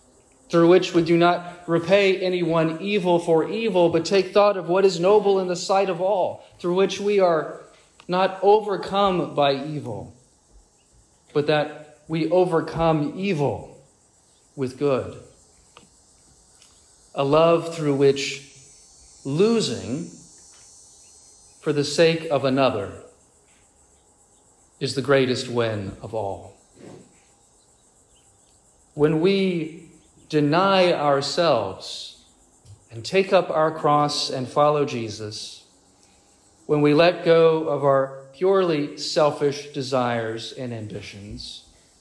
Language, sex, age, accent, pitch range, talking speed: English, male, 40-59, American, 130-170 Hz, 110 wpm